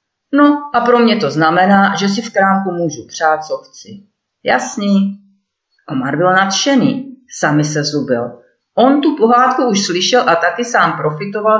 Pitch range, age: 165-230 Hz, 40-59